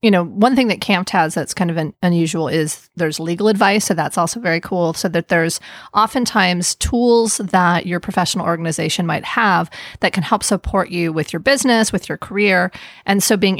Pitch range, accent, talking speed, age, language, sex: 170-215 Hz, American, 205 wpm, 30-49, English, female